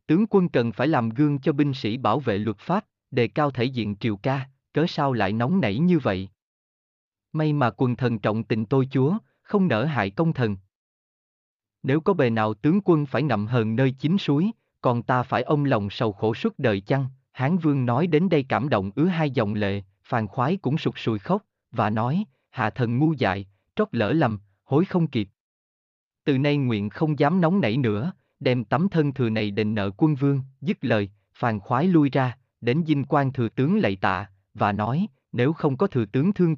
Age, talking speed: 20-39, 210 wpm